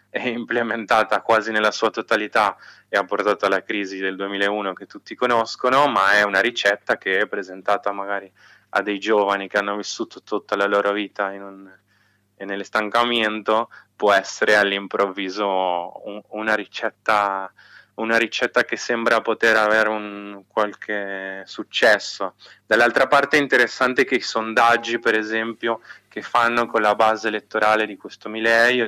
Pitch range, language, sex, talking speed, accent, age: 100-115 Hz, Italian, male, 150 wpm, native, 20-39